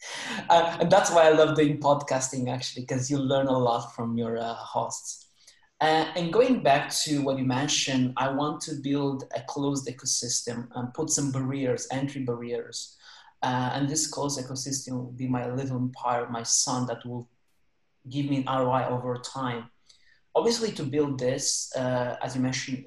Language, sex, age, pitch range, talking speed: English, male, 30-49, 125-145 Hz, 175 wpm